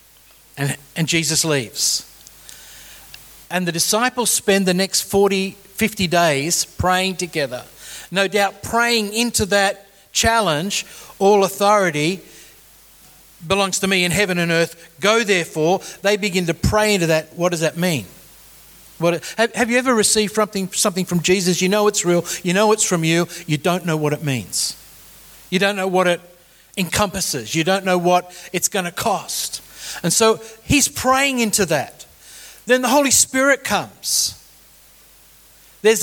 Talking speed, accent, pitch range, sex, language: 155 wpm, Australian, 175-220 Hz, male, English